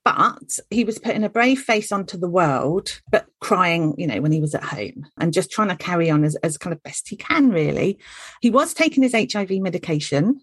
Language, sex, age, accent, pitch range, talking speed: English, female, 40-59, British, 150-195 Hz, 225 wpm